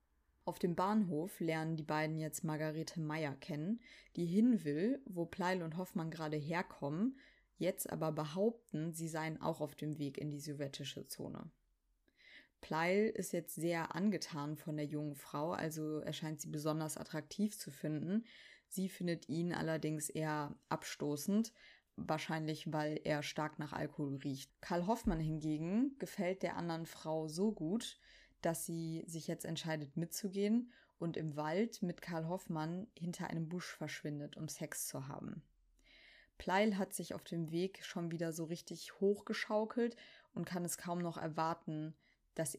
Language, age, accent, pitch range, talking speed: German, 20-39, German, 155-185 Hz, 150 wpm